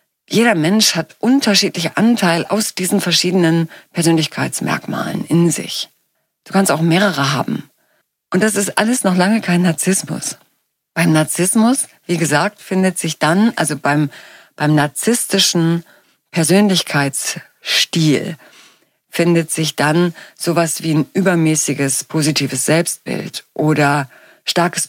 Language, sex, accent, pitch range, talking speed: German, female, German, 155-185 Hz, 115 wpm